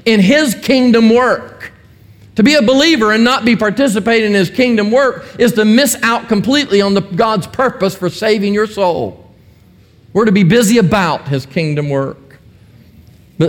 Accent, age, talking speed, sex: American, 50-69, 170 wpm, male